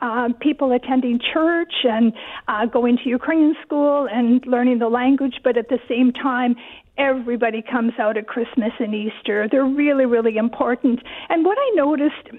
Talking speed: 165 wpm